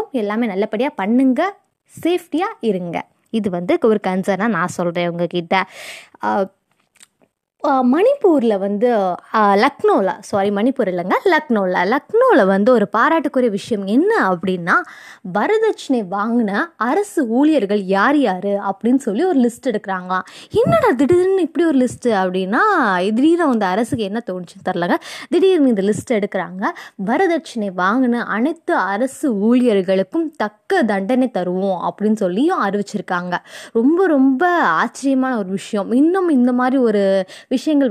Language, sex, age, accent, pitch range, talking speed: Tamil, female, 20-39, native, 195-290 Hz, 115 wpm